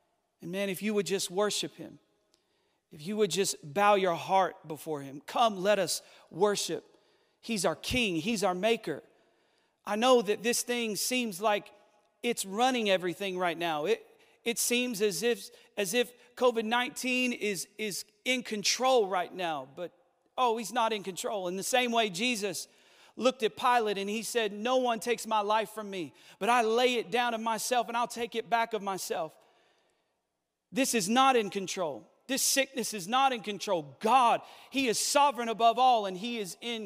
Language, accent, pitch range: English, American, 190-240 Hz